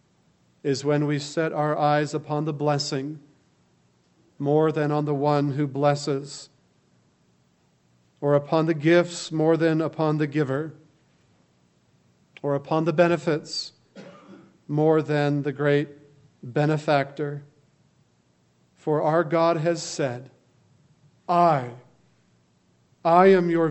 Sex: male